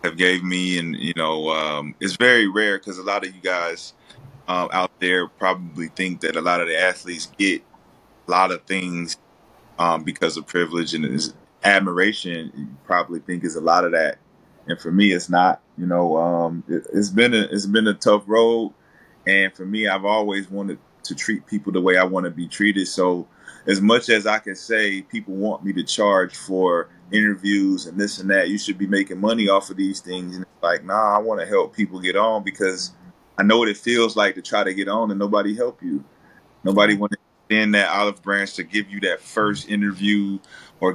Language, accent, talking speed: English, American, 215 wpm